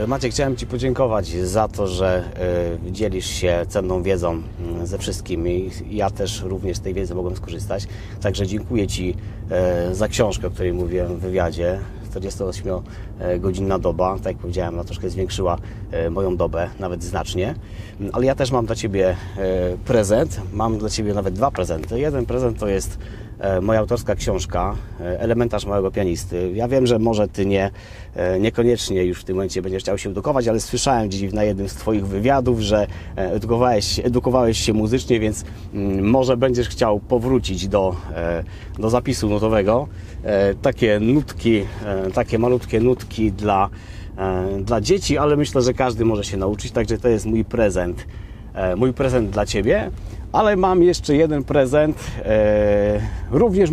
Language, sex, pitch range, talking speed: Polish, male, 95-115 Hz, 150 wpm